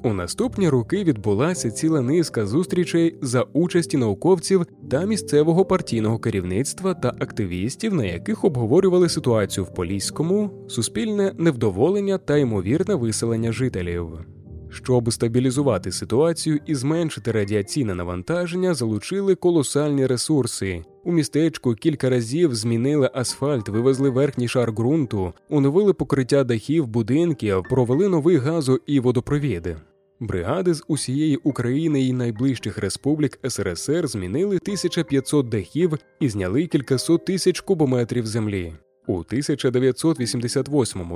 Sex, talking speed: male, 110 wpm